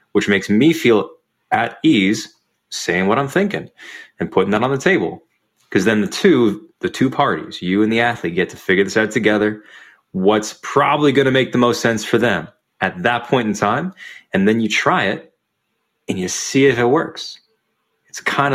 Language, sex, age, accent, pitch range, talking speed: English, male, 20-39, American, 95-115 Hz, 195 wpm